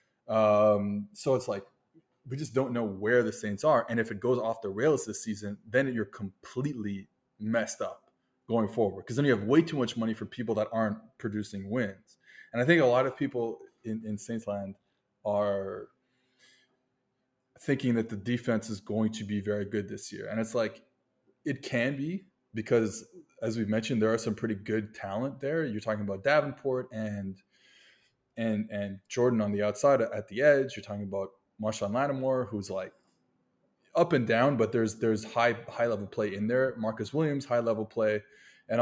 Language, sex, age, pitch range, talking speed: English, male, 20-39, 105-125 Hz, 185 wpm